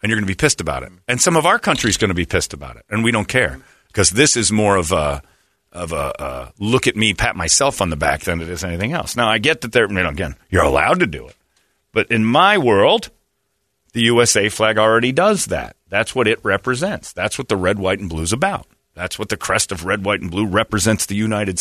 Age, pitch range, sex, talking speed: 40-59, 90-115 Hz, male, 260 wpm